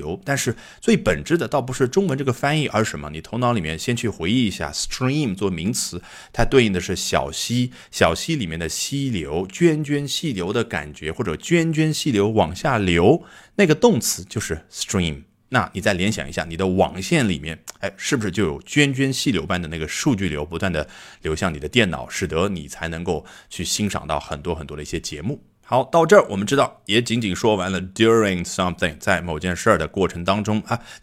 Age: 30-49